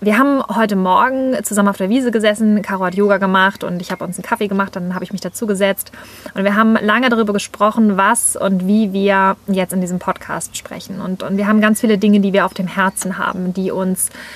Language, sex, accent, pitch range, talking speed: German, female, German, 190-225 Hz, 235 wpm